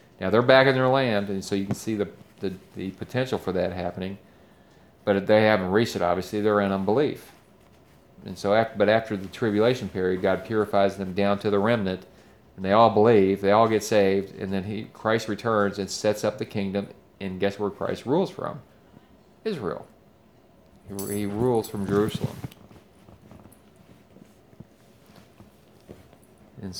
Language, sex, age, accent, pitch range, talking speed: English, male, 40-59, American, 95-110 Hz, 165 wpm